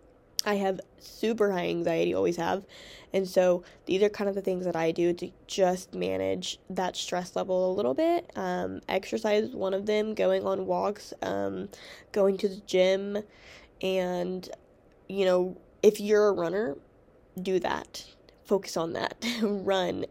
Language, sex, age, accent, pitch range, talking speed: English, female, 10-29, American, 180-205 Hz, 160 wpm